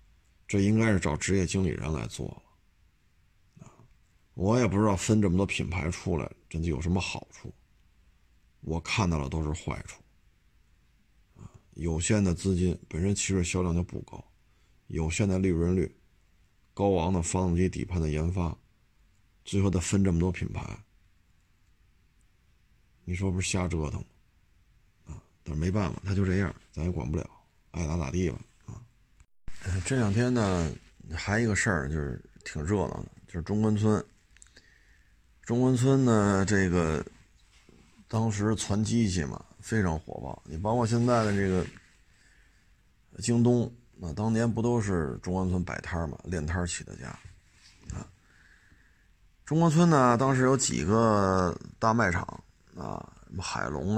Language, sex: Chinese, male